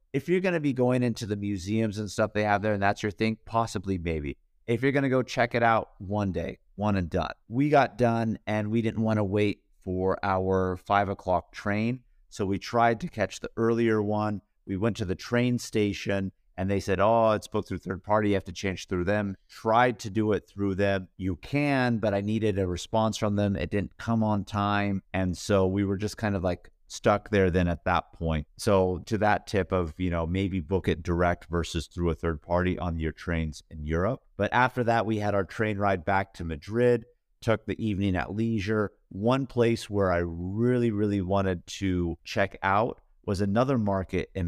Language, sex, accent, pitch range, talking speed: English, male, American, 95-110 Hz, 215 wpm